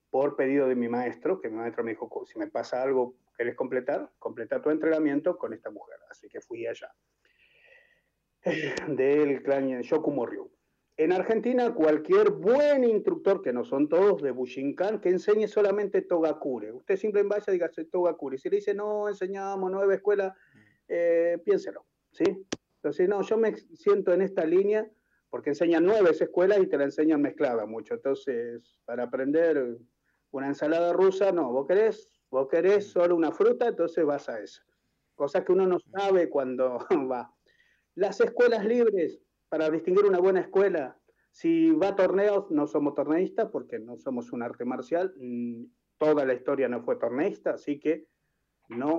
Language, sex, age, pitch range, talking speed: Spanish, male, 50-69, 145-240 Hz, 165 wpm